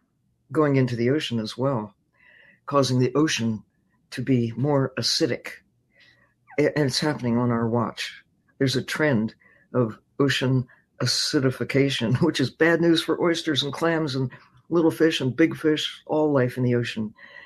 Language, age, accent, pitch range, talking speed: English, 60-79, American, 120-145 Hz, 150 wpm